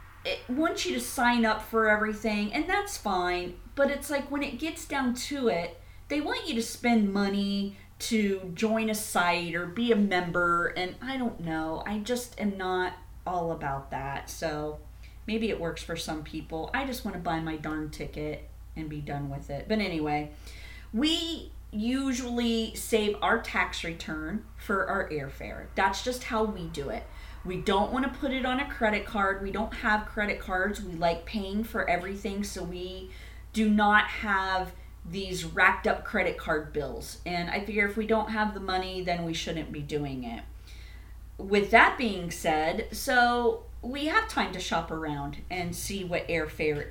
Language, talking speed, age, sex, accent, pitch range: English, 180 wpm, 30-49, female, American, 165-225 Hz